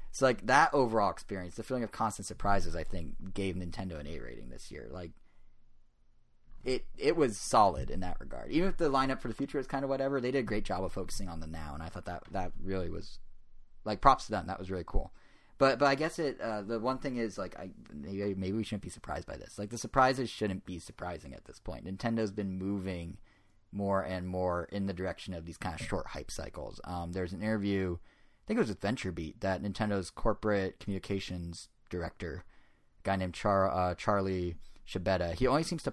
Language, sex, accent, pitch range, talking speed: English, male, American, 90-110 Hz, 220 wpm